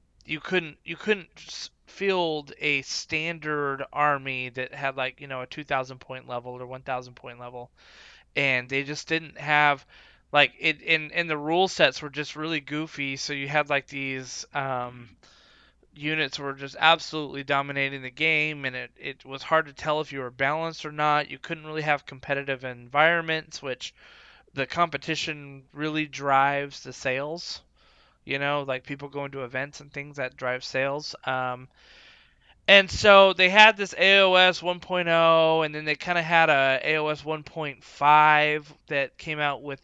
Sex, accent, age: male, American, 20-39